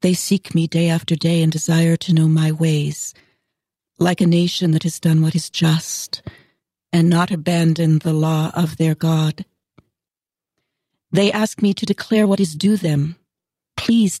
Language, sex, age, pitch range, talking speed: English, female, 60-79, 160-190 Hz, 165 wpm